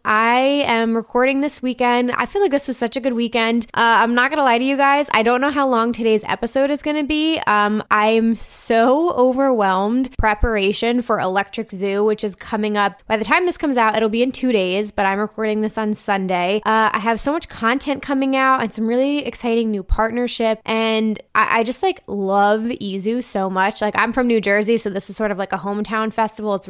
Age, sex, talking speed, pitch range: 20-39, female, 225 wpm, 210-255 Hz